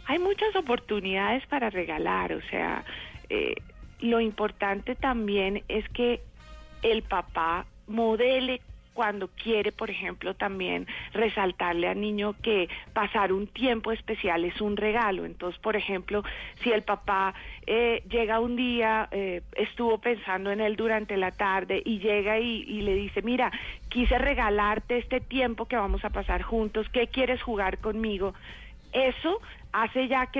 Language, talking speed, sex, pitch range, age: Spanish, 145 wpm, female, 190-230 Hz, 40-59